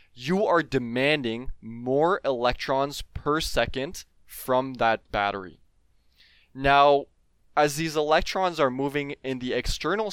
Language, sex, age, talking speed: English, male, 20-39, 115 wpm